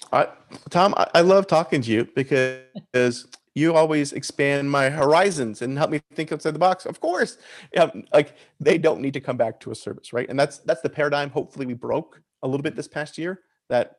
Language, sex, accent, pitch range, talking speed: English, male, American, 125-155 Hz, 215 wpm